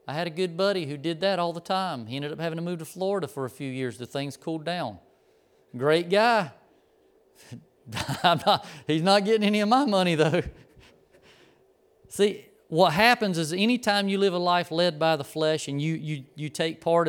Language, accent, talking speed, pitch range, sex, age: English, American, 200 wpm, 150-195 Hz, male, 40-59